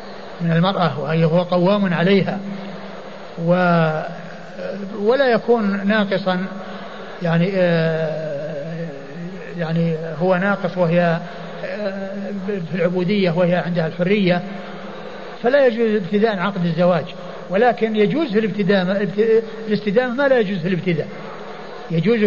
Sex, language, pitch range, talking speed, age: male, Arabic, 180-210 Hz, 100 wpm, 60-79